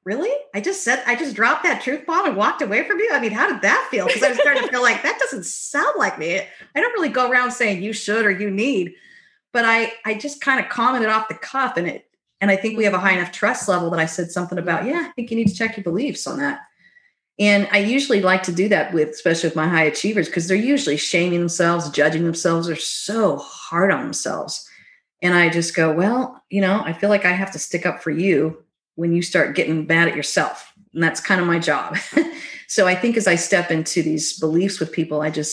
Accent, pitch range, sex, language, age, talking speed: American, 165-220 Hz, female, English, 30-49, 255 wpm